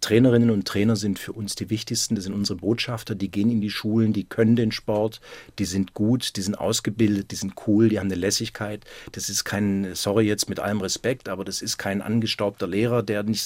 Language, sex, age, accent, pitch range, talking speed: German, male, 40-59, German, 105-120 Hz, 225 wpm